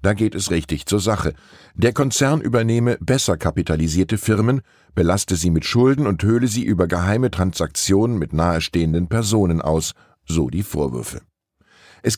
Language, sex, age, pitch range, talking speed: German, male, 10-29, 85-115 Hz, 150 wpm